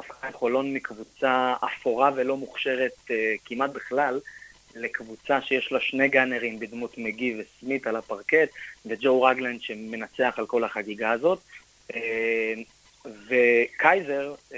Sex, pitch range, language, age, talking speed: male, 115-140 Hz, Hebrew, 30-49, 105 wpm